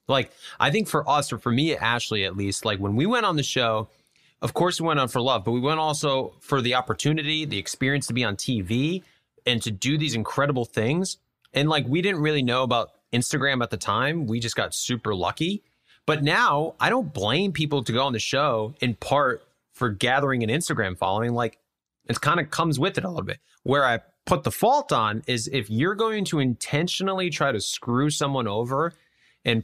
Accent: American